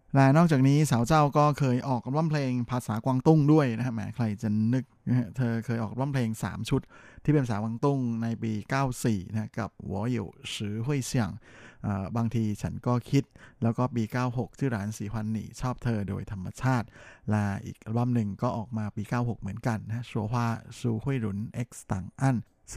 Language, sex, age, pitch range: Thai, male, 20-39, 110-125 Hz